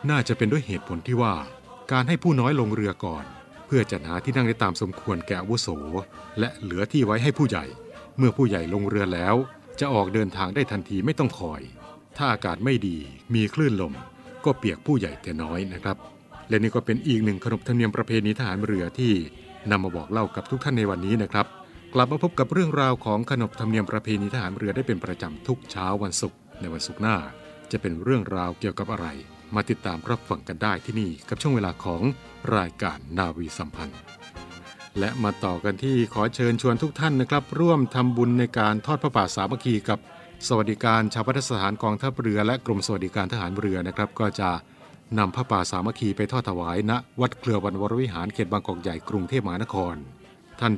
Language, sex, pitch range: Thai, male, 95-120 Hz